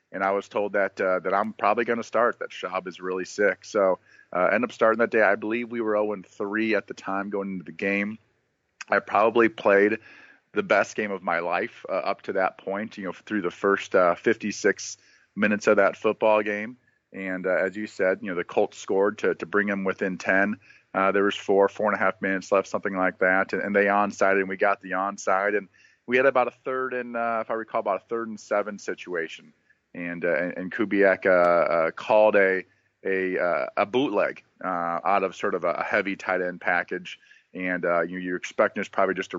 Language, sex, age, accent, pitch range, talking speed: English, male, 40-59, American, 95-115 Hz, 230 wpm